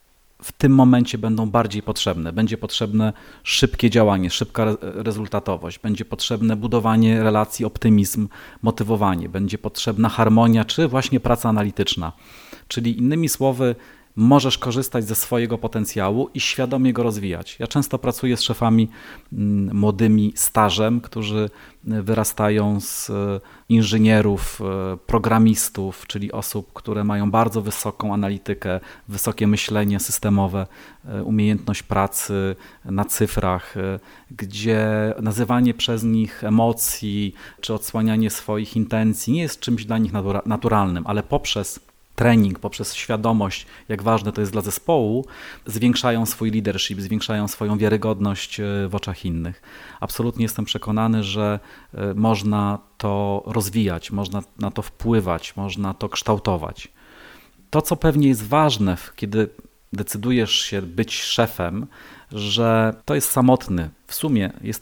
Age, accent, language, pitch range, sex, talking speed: 40-59, native, Polish, 100-115 Hz, male, 120 wpm